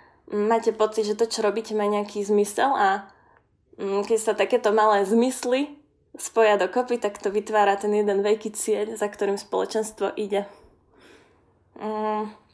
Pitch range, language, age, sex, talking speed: 205-230 Hz, Slovak, 20-39, female, 145 wpm